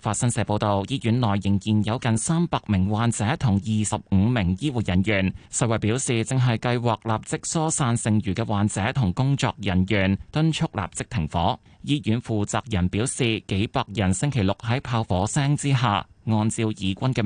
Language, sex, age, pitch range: Chinese, male, 20-39, 100-130 Hz